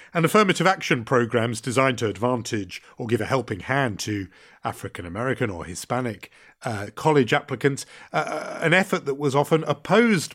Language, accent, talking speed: English, British, 150 wpm